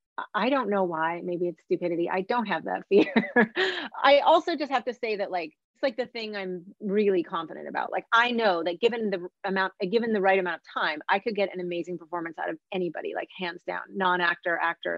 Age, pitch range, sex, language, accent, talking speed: 30-49, 175-220 Hz, female, English, American, 225 wpm